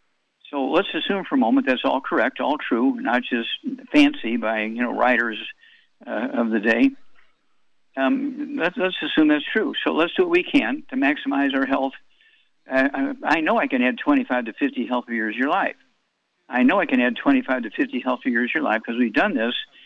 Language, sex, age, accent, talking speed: English, male, 60-79, American, 210 wpm